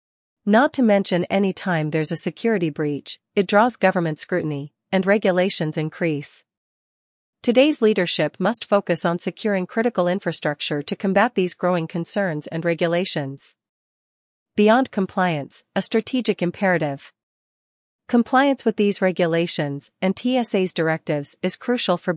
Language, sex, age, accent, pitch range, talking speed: English, female, 40-59, American, 160-200 Hz, 125 wpm